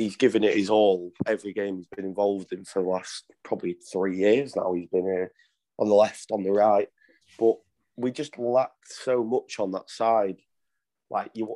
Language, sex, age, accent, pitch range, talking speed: English, male, 20-39, British, 95-115 Hz, 195 wpm